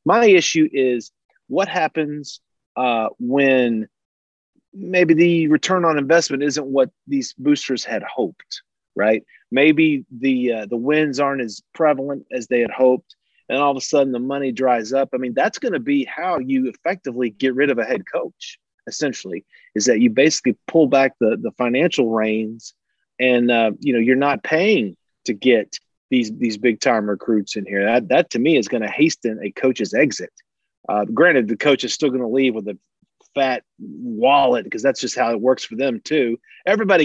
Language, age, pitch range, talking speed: English, 40-59, 120-150 Hz, 190 wpm